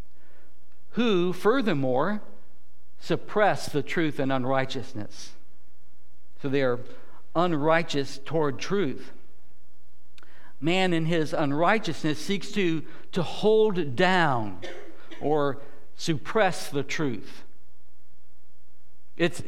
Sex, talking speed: male, 85 wpm